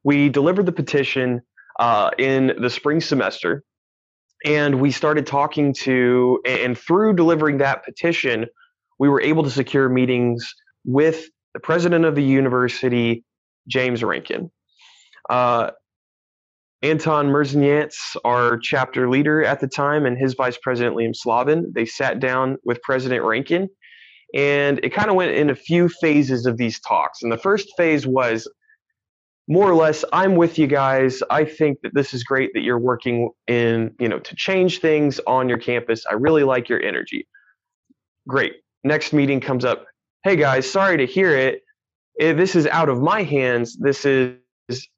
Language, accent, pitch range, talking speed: English, American, 125-155 Hz, 160 wpm